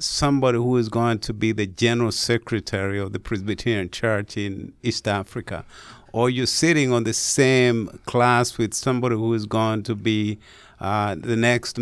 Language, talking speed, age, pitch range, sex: English, 170 wpm, 50-69, 100-120 Hz, male